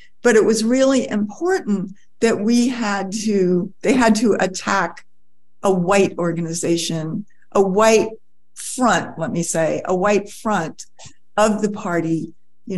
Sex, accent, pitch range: female, American, 180-235 Hz